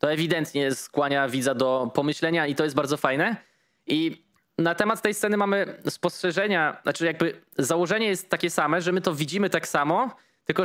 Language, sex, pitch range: Polish, male, 150-180 Hz